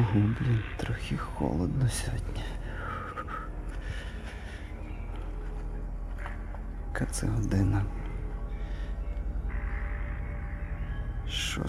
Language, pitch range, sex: Ukrainian, 80-110 Hz, male